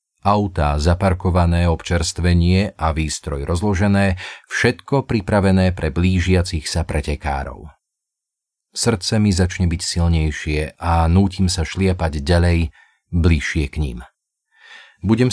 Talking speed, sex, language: 100 wpm, male, Slovak